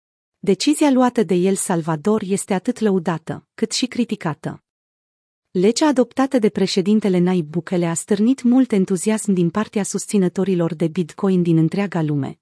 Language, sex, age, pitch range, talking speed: Romanian, female, 30-49, 175-220 Hz, 140 wpm